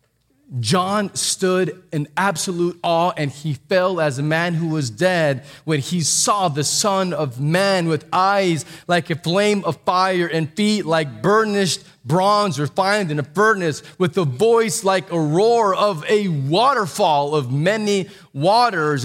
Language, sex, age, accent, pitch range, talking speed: English, male, 30-49, American, 140-200 Hz, 155 wpm